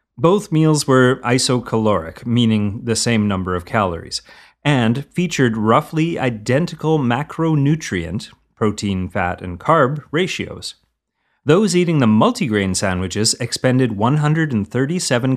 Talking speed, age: 100 wpm, 30-49